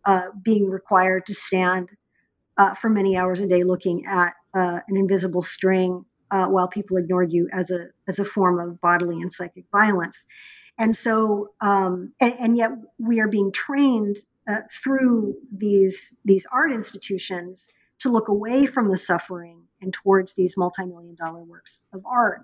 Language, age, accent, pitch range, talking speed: English, 50-69, American, 185-225 Hz, 165 wpm